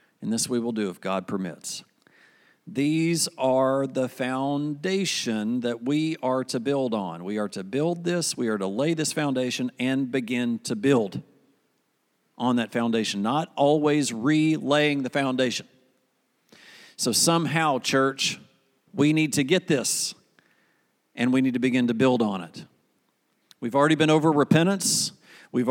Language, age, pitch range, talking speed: English, 50-69, 135-185 Hz, 150 wpm